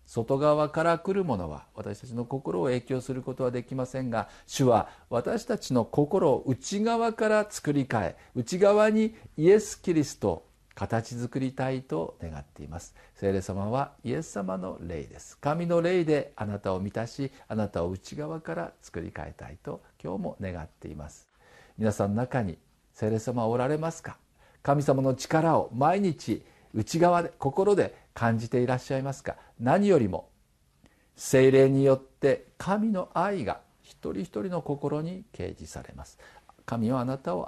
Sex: male